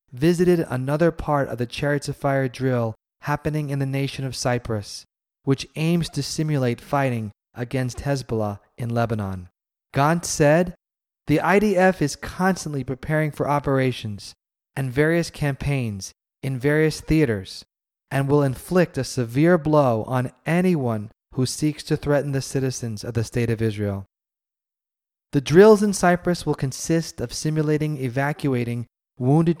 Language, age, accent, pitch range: English, 30-49, American, 120-155 Hz